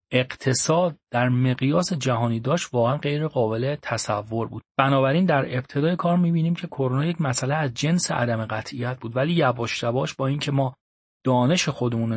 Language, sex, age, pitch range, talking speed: Persian, male, 40-59, 120-155 Hz, 160 wpm